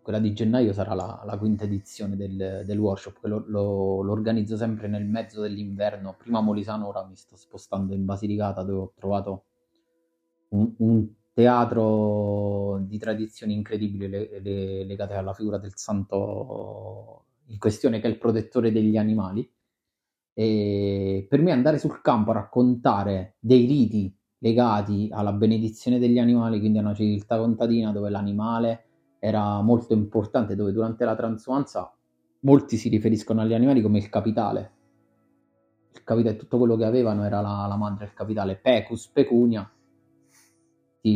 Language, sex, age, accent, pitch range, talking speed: Italian, male, 30-49, native, 100-115 Hz, 155 wpm